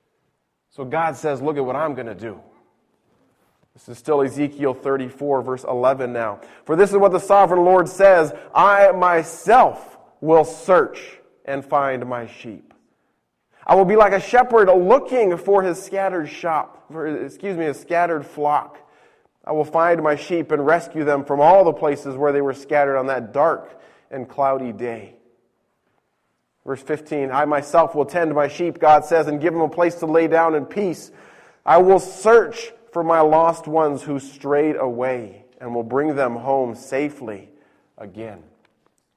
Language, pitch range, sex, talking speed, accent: English, 135-175 Hz, male, 165 wpm, American